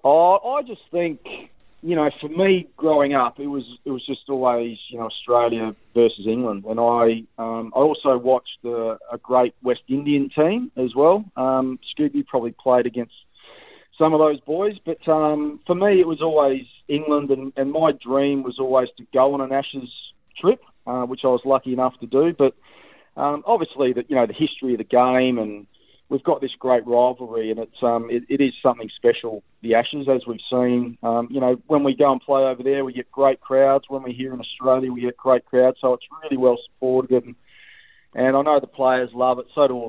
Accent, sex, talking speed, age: Australian, male, 210 wpm, 40-59